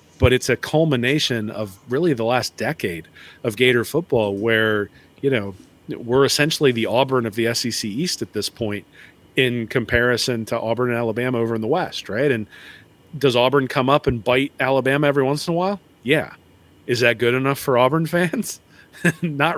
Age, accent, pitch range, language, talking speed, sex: 40-59, American, 115-150 Hz, English, 180 wpm, male